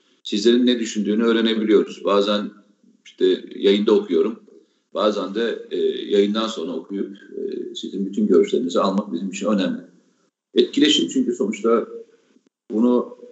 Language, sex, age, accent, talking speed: Turkish, male, 50-69, native, 110 wpm